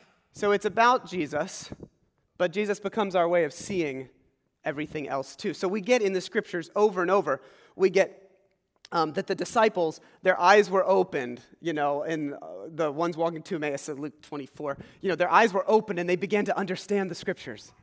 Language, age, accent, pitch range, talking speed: English, 30-49, American, 165-205 Hz, 190 wpm